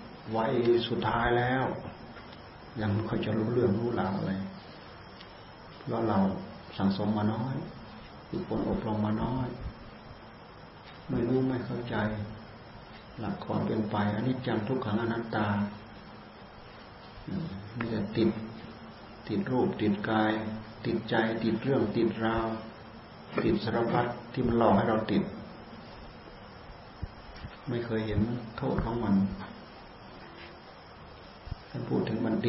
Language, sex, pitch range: Thai, male, 100-115 Hz